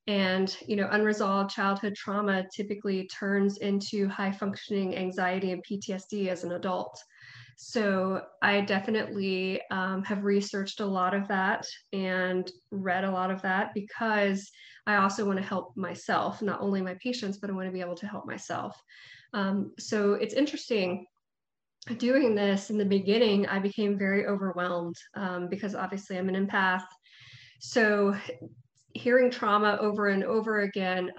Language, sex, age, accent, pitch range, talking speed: English, female, 20-39, American, 185-205 Hz, 150 wpm